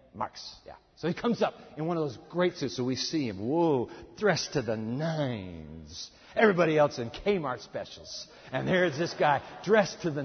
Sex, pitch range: male, 140-205 Hz